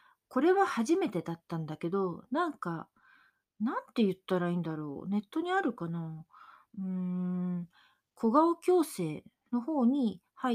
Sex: female